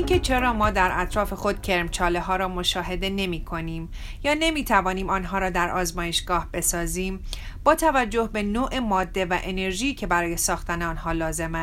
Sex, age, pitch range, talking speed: female, 30-49, 175-215 Hz, 170 wpm